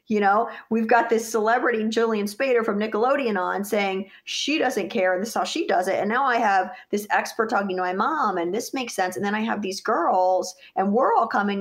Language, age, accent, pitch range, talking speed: English, 30-49, American, 185-225 Hz, 240 wpm